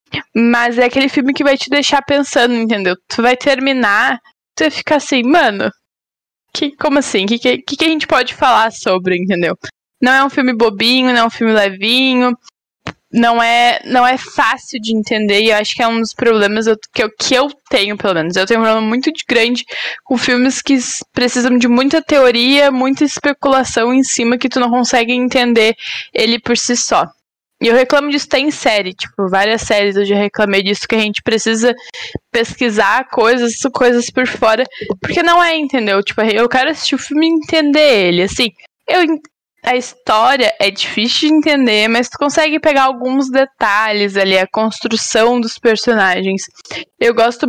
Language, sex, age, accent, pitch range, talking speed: Portuguese, female, 10-29, Brazilian, 220-275 Hz, 185 wpm